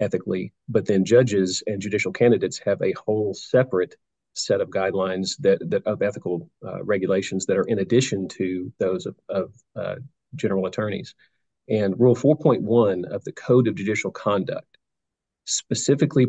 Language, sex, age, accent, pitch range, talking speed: English, male, 40-59, American, 95-120 Hz, 150 wpm